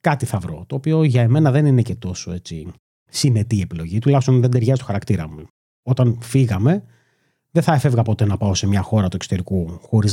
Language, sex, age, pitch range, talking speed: Greek, male, 30-49, 110-150 Hz, 200 wpm